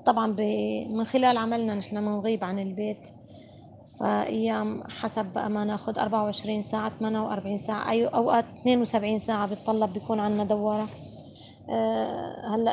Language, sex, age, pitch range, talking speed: Arabic, female, 20-39, 210-230 Hz, 135 wpm